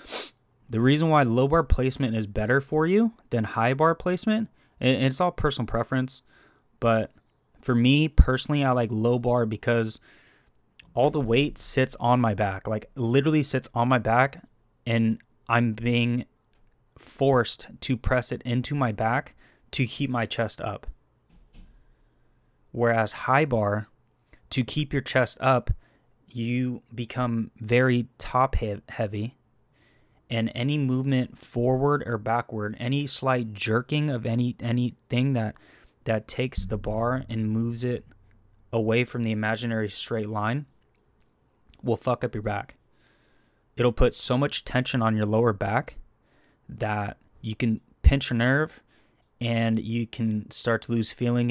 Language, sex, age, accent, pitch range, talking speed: English, male, 20-39, American, 110-130 Hz, 145 wpm